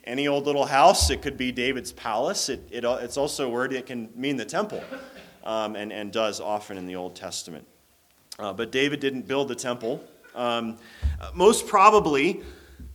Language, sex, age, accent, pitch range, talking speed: English, male, 30-49, American, 120-160 Hz, 180 wpm